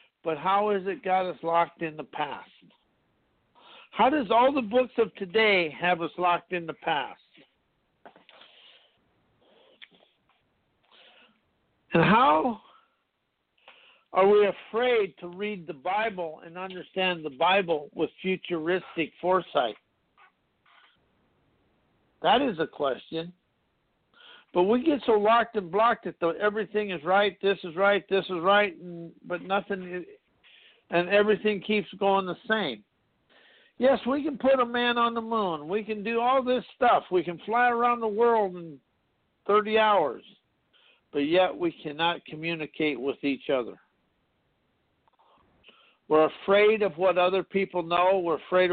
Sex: male